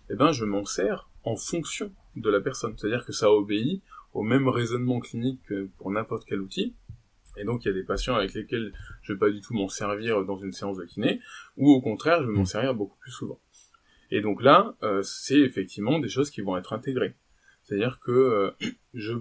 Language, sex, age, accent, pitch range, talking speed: French, male, 20-39, French, 105-140 Hz, 220 wpm